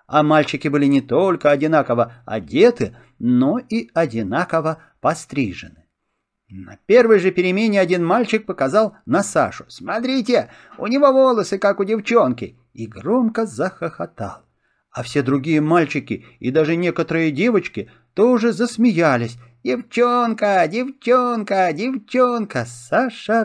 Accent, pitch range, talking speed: native, 145-235 Hz, 115 wpm